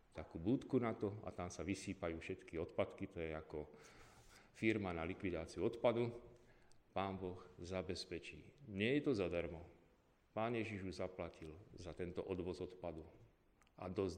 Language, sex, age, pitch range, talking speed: Slovak, male, 40-59, 85-105 Hz, 145 wpm